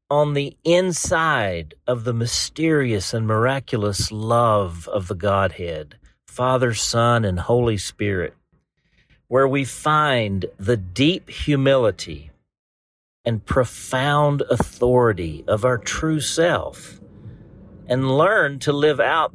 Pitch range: 100-130 Hz